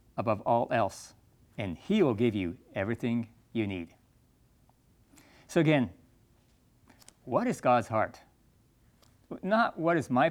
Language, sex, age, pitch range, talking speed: English, male, 50-69, 115-130 Hz, 120 wpm